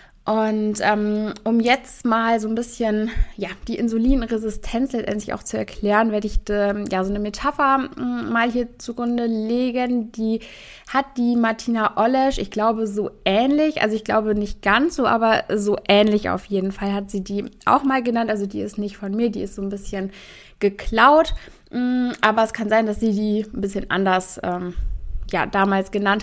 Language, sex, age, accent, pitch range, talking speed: German, female, 20-39, German, 200-240 Hz, 180 wpm